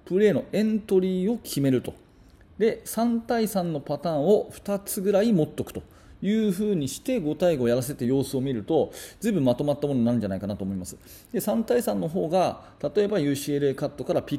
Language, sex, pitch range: Japanese, male, 115-185 Hz